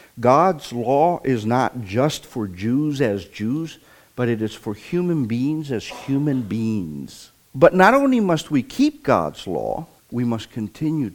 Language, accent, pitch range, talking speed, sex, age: English, American, 115-170 Hz, 155 wpm, male, 50-69